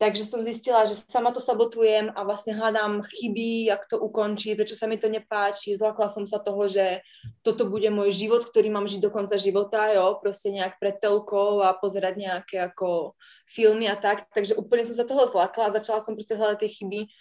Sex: female